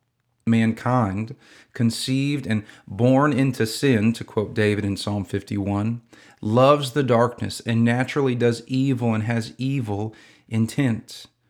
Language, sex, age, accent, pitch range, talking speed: English, male, 40-59, American, 110-130 Hz, 120 wpm